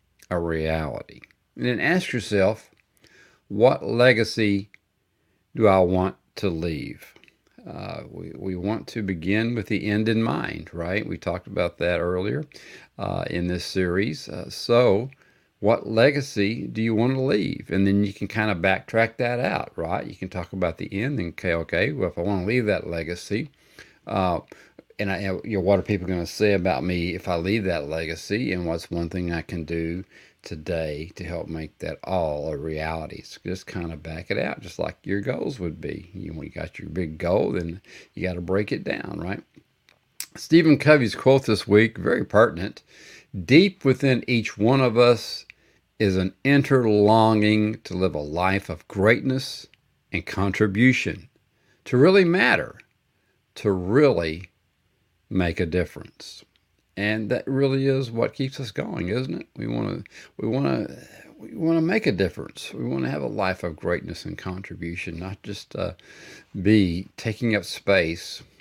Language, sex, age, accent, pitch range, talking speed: English, male, 50-69, American, 85-115 Hz, 180 wpm